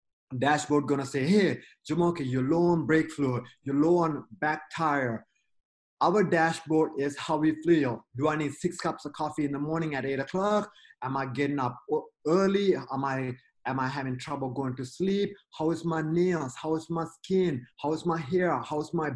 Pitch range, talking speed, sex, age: 135-165 Hz, 195 wpm, male, 30-49